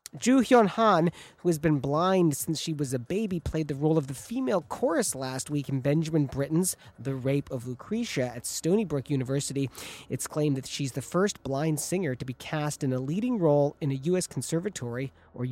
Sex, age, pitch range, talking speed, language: male, 40-59, 135-185 Hz, 200 wpm, English